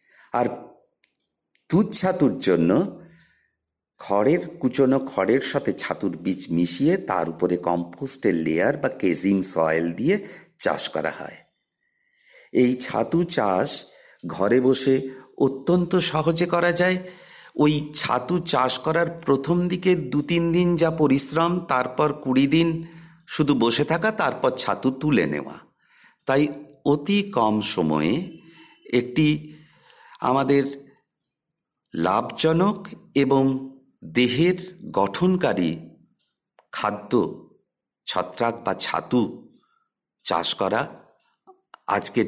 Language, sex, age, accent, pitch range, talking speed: Bengali, male, 50-69, native, 130-175 Hz, 75 wpm